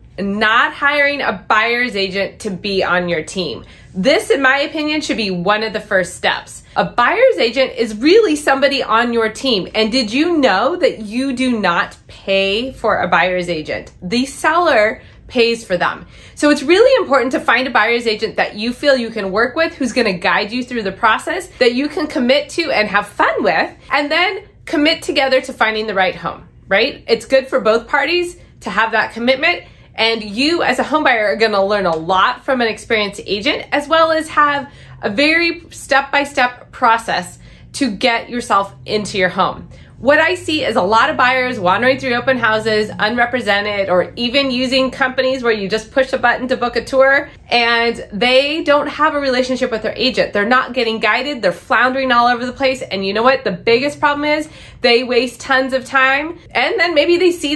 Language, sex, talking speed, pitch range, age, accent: English, female, 200 wpm, 210-280 Hz, 20-39, American